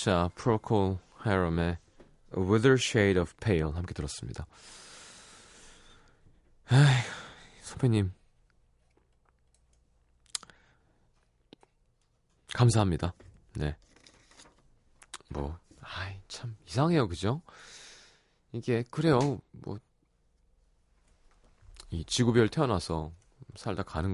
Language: Korean